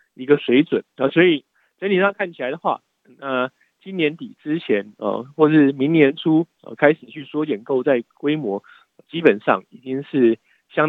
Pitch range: 115-155 Hz